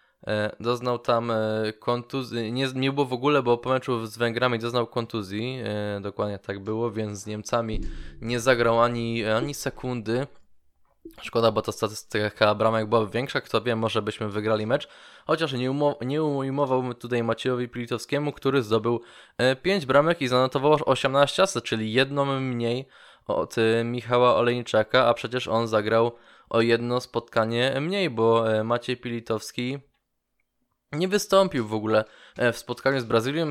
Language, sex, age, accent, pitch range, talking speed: Polish, male, 20-39, native, 115-130 Hz, 140 wpm